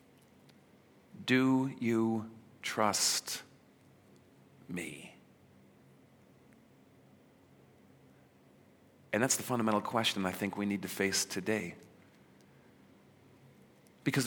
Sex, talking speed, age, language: male, 70 wpm, 40-59, English